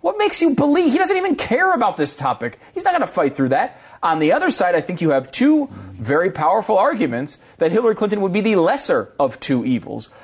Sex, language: male, English